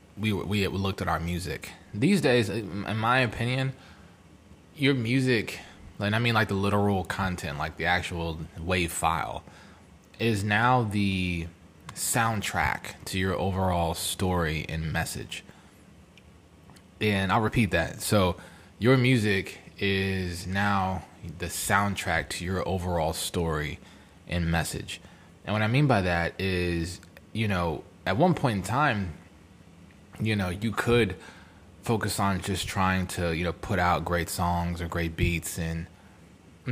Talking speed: 140 wpm